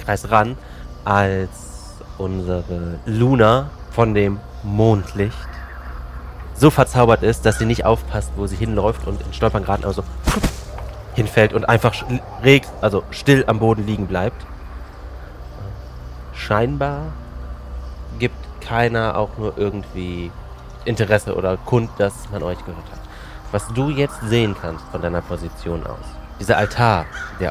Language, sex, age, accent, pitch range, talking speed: German, male, 30-49, German, 80-110 Hz, 130 wpm